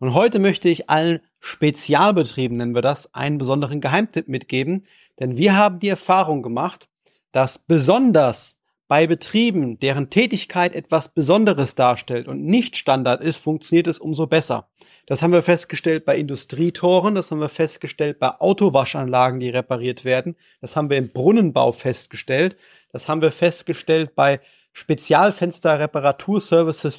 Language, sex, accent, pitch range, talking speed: German, male, German, 130-175 Hz, 140 wpm